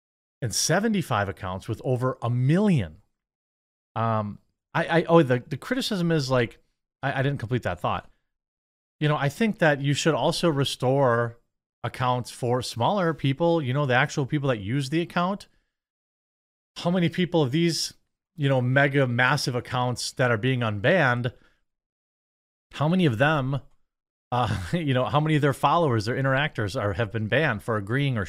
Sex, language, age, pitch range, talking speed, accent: male, English, 30-49, 115-150 Hz, 170 wpm, American